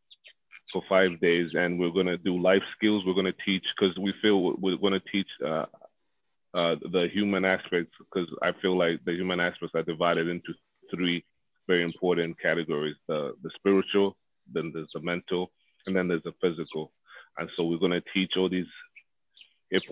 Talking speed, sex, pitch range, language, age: 185 wpm, male, 85-95 Hz, English, 30-49